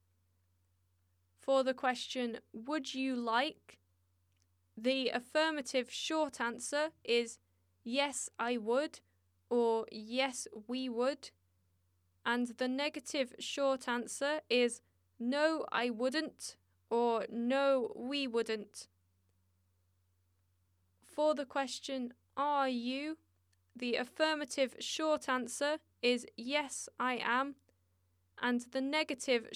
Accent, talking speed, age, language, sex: British, 95 wpm, 10-29, English, female